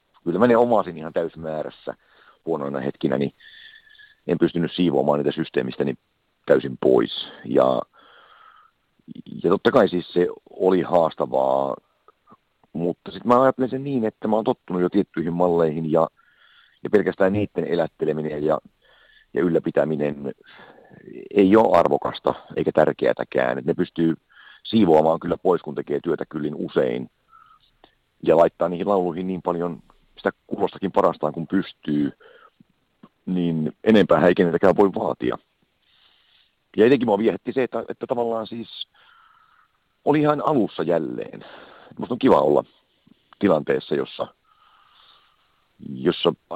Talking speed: 125 wpm